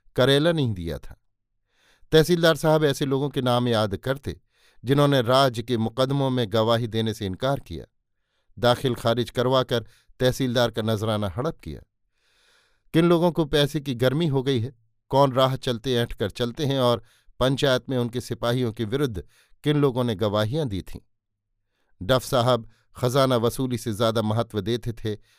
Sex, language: male, Hindi